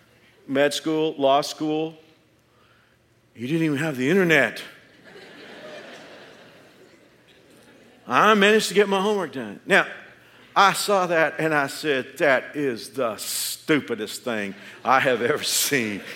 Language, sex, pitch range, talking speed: English, male, 125-180 Hz, 125 wpm